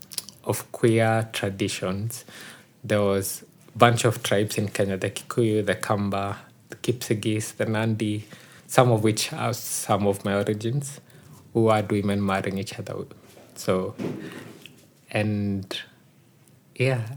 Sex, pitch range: male, 105-125 Hz